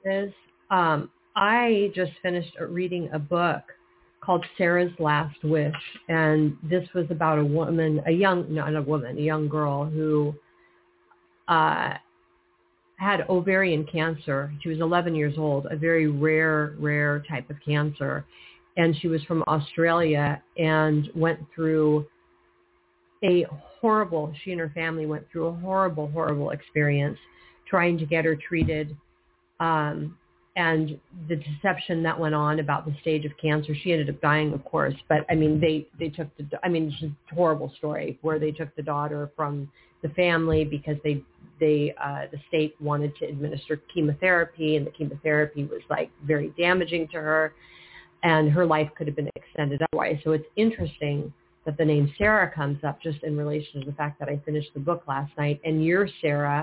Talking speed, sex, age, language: 170 wpm, female, 40-59, English